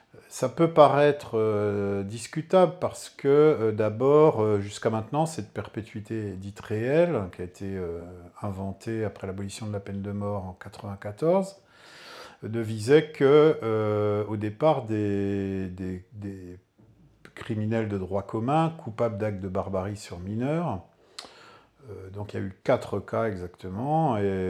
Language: French